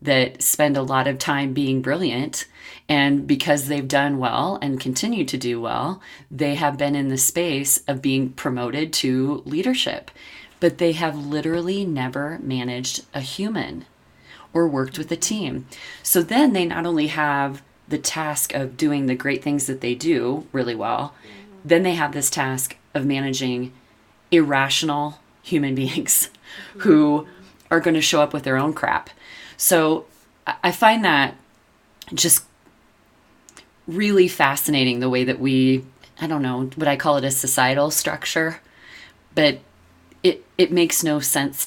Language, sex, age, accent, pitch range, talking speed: English, female, 30-49, American, 130-160 Hz, 155 wpm